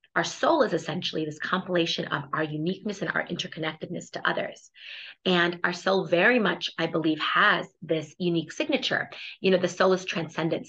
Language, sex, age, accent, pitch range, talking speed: English, female, 30-49, American, 170-200 Hz, 175 wpm